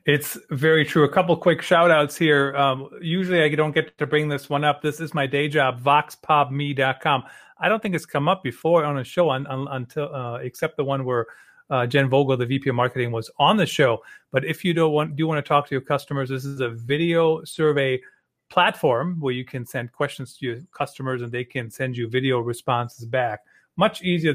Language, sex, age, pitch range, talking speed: English, male, 30-49, 130-155 Hz, 220 wpm